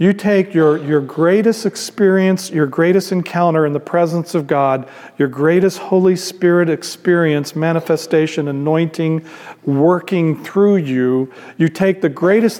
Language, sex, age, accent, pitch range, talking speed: English, male, 50-69, American, 140-185 Hz, 135 wpm